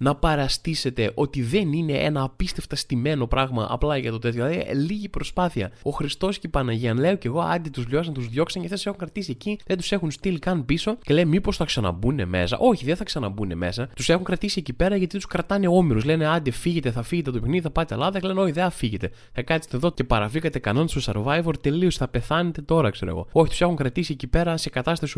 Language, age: Greek, 20-39